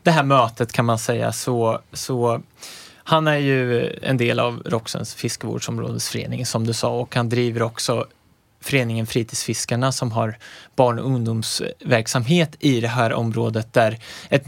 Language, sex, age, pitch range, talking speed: Swedish, male, 20-39, 115-140 Hz, 150 wpm